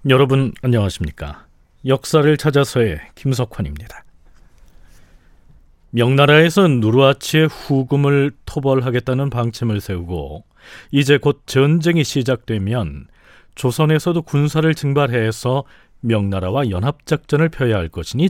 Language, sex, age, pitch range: Korean, male, 40-59, 115-155 Hz